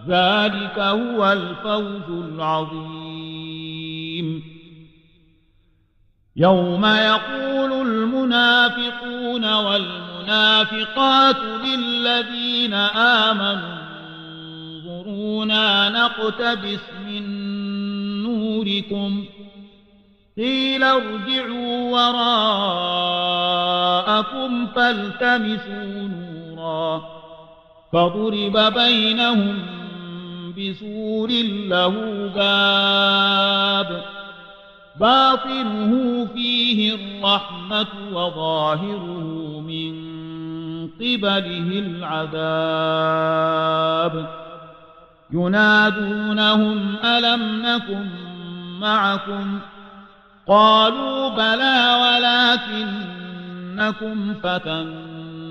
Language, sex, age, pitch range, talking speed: English, male, 50-69, 165-220 Hz, 40 wpm